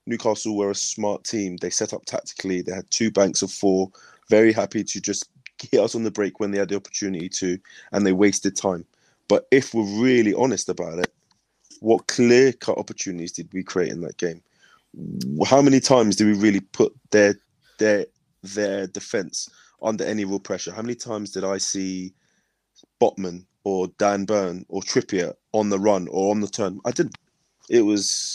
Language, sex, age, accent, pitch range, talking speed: English, male, 20-39, British, 90-105 Hz, 185 wpm